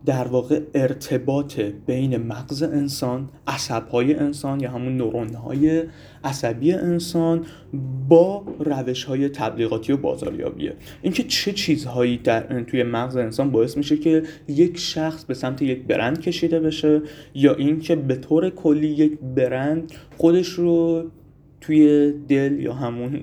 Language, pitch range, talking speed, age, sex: Persian, 125-160 Hz, 130 wpm, 30-49, male